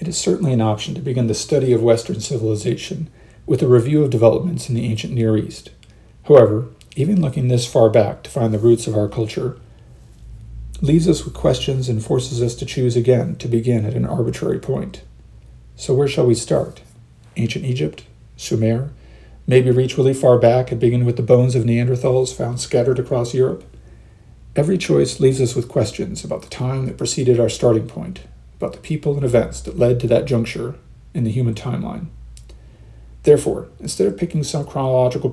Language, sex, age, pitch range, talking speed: English, male, 40-59, 115-140 Hz, 185 wpm